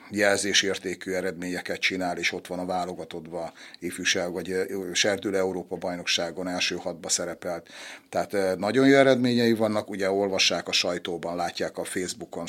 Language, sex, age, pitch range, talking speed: Hungarian, male, 60-79, 95-105 Hz, 130 wpm